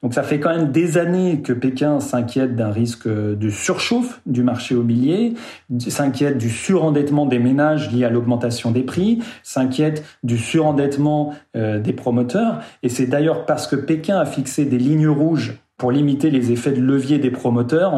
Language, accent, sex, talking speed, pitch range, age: French, French, male, 170 wpm, 120-150 Hz, 40-59